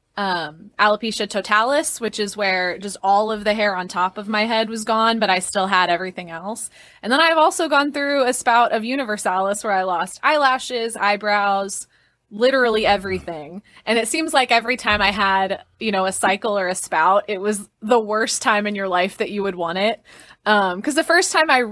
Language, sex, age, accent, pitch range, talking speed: English, female, 20-39, American, 195-235 Hz, 205 wpm